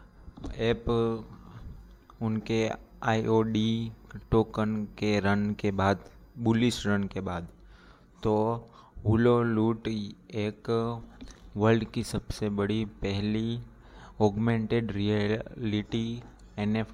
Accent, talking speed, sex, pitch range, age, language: native, 85 wpm, male, 105-110 Hz, 20-39, Hindi